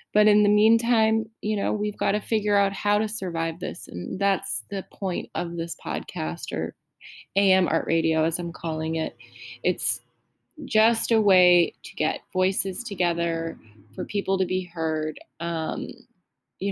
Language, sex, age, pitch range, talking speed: English, female, 20-39, 170-210 Hz, 160 wpm